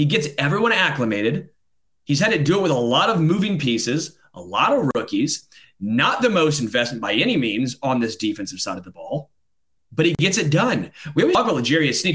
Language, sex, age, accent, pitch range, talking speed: English, male, 30-49, American, 135-220 Hz, 215 wpm